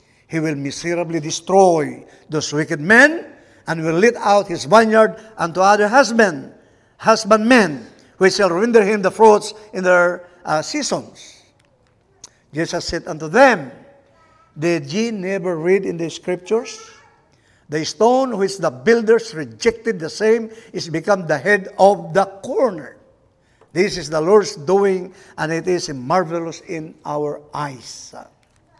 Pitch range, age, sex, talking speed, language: 165-230 Hz, 50-69, male, 135 wpm, English